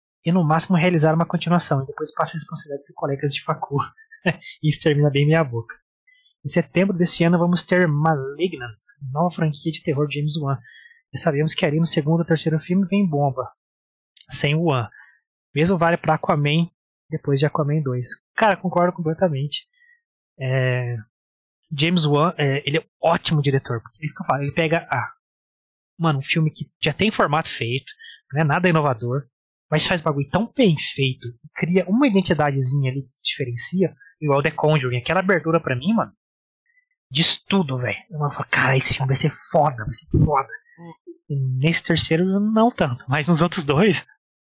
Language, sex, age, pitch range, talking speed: Portuguese, male, 20-39, 140-180 Hz, 175 wpm